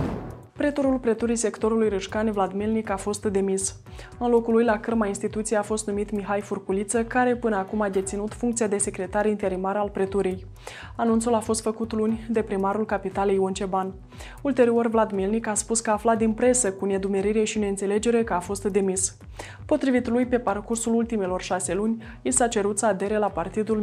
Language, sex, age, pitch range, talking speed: Romanian, female, 20-39, 195-225 Hz, 185 wpm